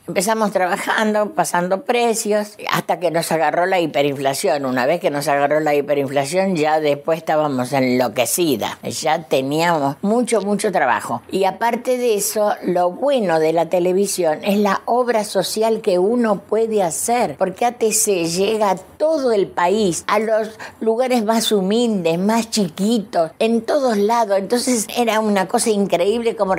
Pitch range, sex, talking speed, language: 170-220 Hz, female, 150 wpm, Spanish